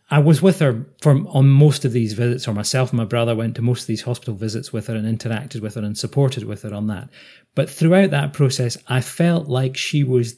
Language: English